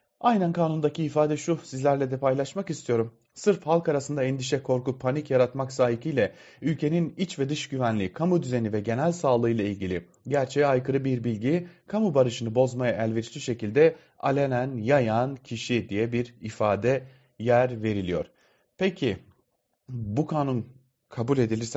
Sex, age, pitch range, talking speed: male, 30-49, 110-145 Hz, 140 wpm